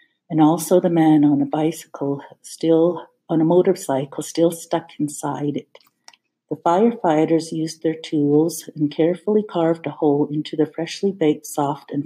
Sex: female